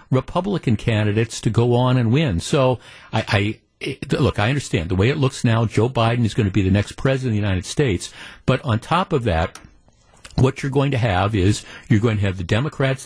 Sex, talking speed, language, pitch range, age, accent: male, 225 wpm, English, 105-135 Hz, 50-69, American